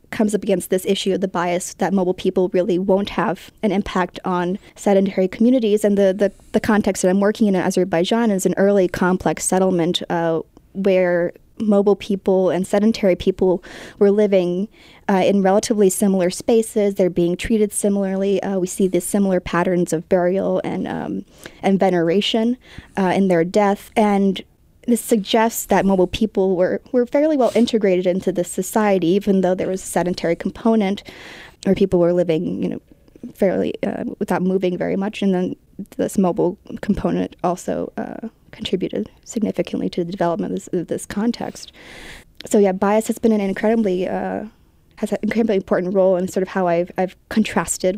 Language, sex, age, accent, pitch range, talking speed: English, female, 20-39, American, 180-210 Hz, 175 wpm